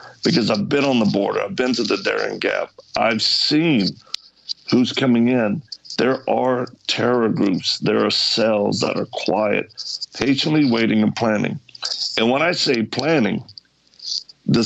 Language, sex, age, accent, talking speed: English, male, 60-79, American, 150 wpm